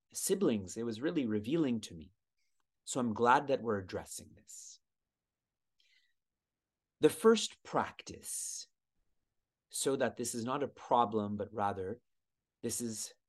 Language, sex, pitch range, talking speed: English, male, 105-145 Hz, 125 wpm